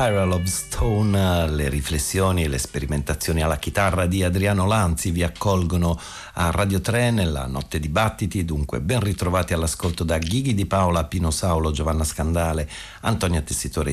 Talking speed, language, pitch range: 145 wpm, Italian, 80-105 Hz